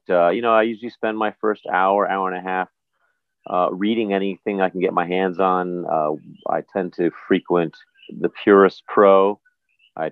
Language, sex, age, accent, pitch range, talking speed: English, male, 40-59, American, 90-110 Hz, 180 wpm